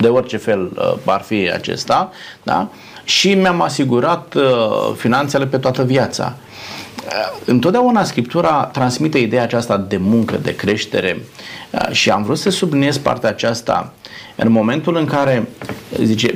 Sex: male